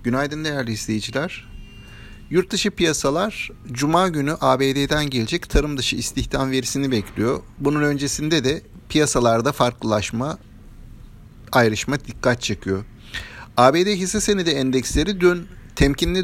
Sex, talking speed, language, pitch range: male, 105 wpm, Turkish, 115-160 Hz